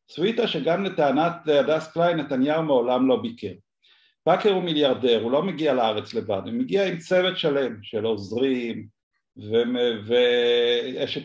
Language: Hebrew